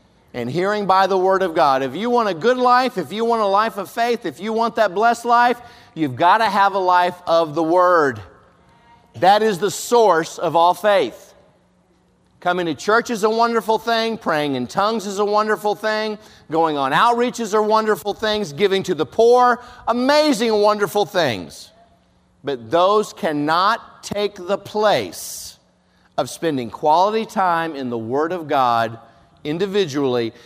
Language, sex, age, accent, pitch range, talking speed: English, male, 50-69, American, 150-215 Hz, 165 wpm